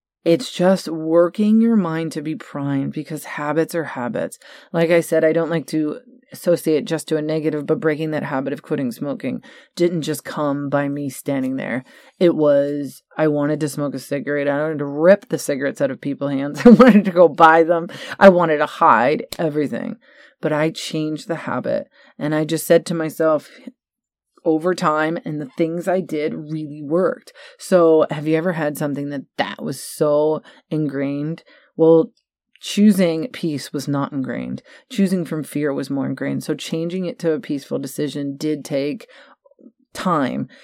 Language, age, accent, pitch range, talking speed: English, 30-49, American, 150-175 Hz, 175 wpm